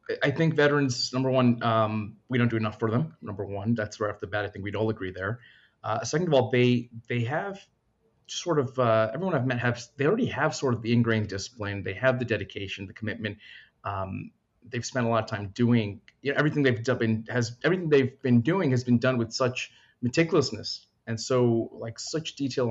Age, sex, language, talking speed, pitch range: 30-49, male, English, 215 wpm, 105-125 Hz